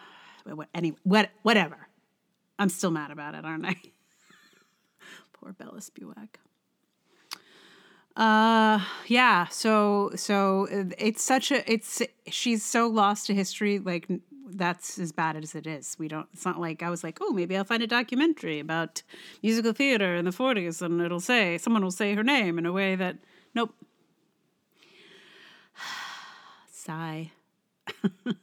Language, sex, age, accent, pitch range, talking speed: English, female, 30-49, American, 175-235 Hz, 145 wpm